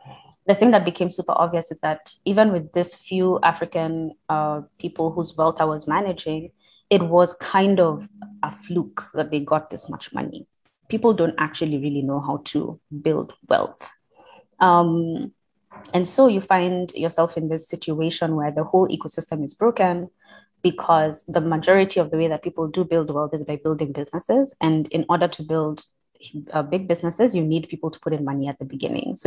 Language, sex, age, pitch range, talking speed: English, female, 20-39, 155-185 Hz, 185 wpm